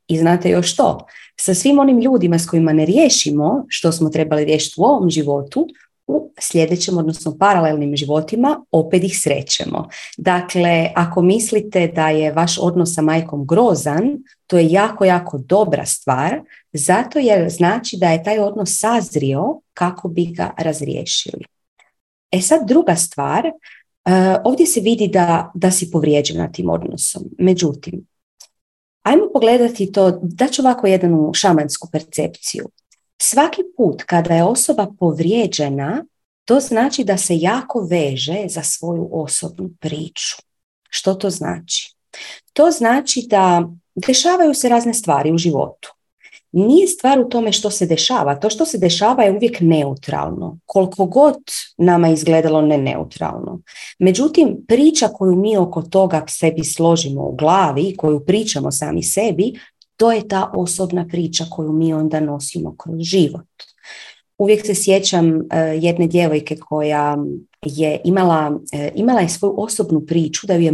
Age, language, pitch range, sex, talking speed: 30-49, Croatian, 160-215 Hz, female, 140 wpm